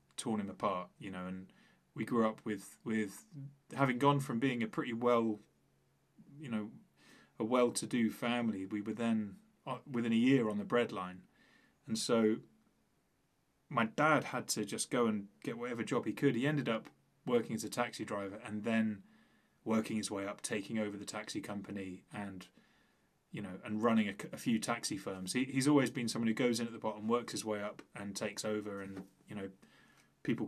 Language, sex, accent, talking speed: English, male, British, 195 wpm